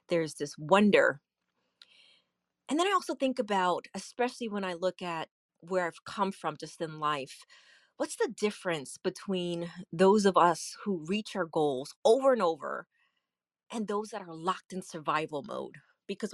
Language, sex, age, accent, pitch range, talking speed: English, female, 30-49, American, 155-205 Hz, 160 wpm